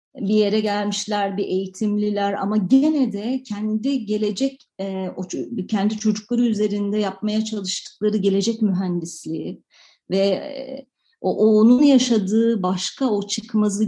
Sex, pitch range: female, 180-220 Hz